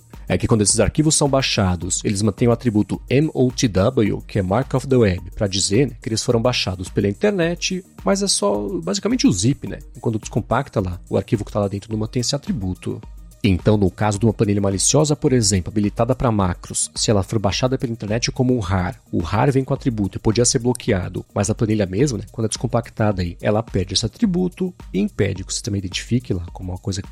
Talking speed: 230 wpm